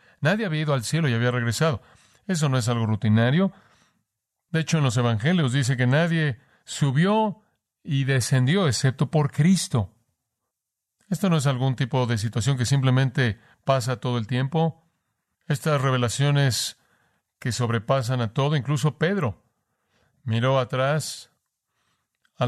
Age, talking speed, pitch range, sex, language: 40-59, 135 wpm, 120-145 Hz, male, Spanish